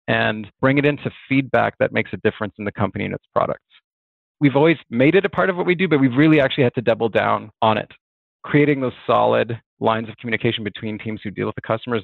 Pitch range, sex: 110-135 Hz, male